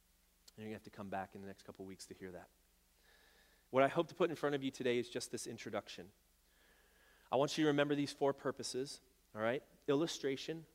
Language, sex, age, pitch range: English, male, 30-49, 110-145 Hz